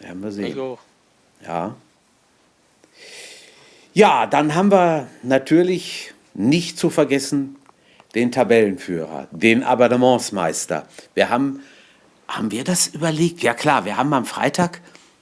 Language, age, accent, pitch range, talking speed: German, 50-69, German, 115-160 Hz, 95 wpm